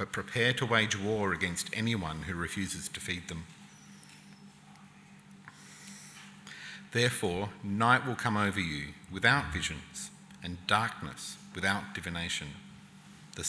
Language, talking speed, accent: English, 110 wpm, Australian